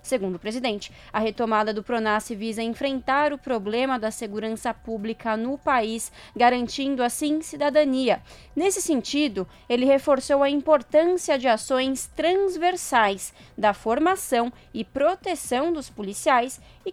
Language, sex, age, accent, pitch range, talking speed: Portuguese, female, 20-39, Brazilian, 225-280 Hz, 125 wpm